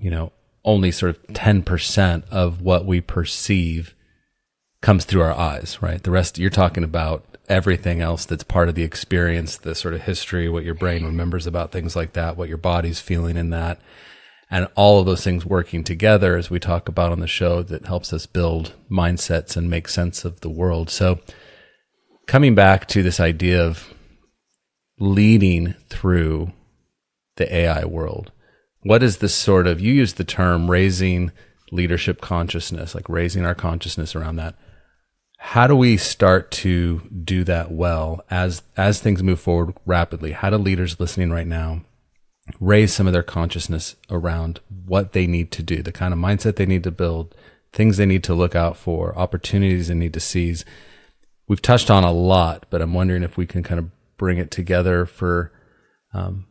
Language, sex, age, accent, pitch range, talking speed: English, male, 30-49, American, 85-95 Hz, 180 wpm